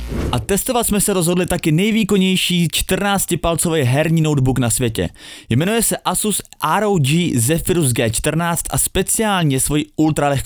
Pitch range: 130-170 Hz